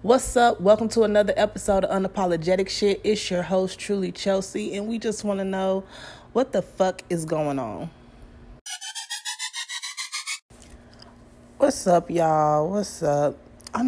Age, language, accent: 20-39, English, American